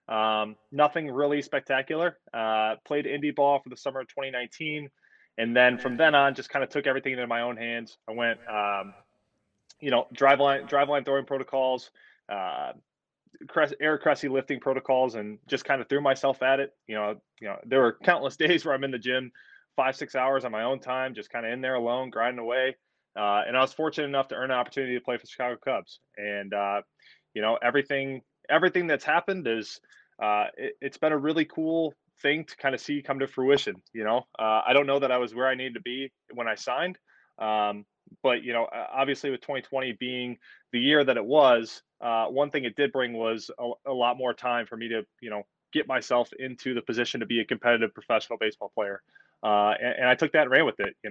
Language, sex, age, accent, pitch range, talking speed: English, male, 20-39, American, 115-140 Hz, 220 wpm